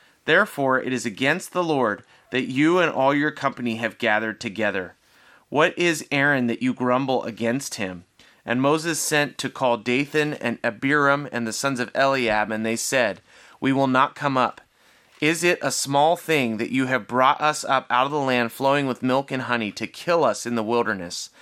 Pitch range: 115-140 Hz